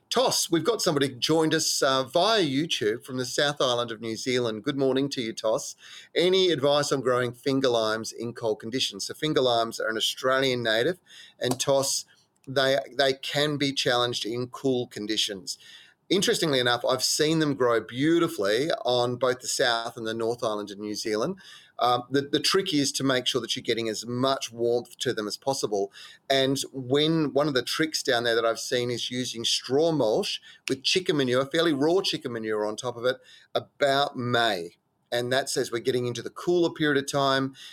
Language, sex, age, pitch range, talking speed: English, male, 30-49, 115-140 Hz, 195 wpm